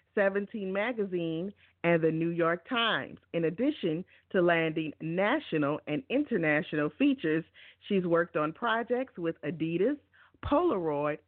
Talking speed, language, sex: 115 wpm, English, female